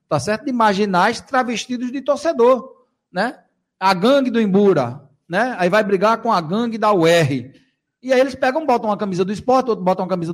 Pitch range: 155-235 Hz